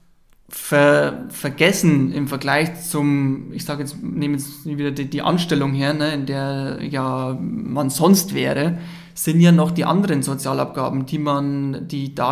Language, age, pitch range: German, 20-39, 145-175 Hz